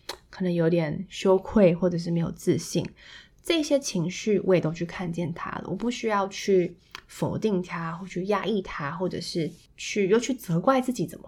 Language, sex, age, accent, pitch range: Chinese, female, 20-39, native, 170-200 Hz